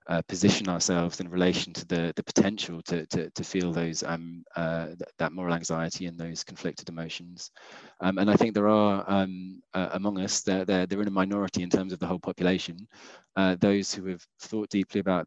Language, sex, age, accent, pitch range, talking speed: English, male, 20-39, British, 85-100 Hz, 210 wpm